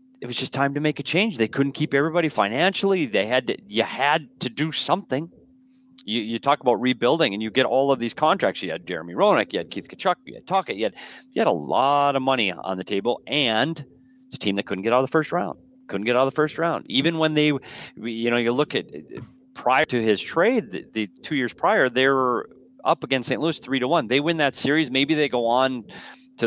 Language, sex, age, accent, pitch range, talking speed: English, male, 40-59, American, 110-150 Hz, 245 wpm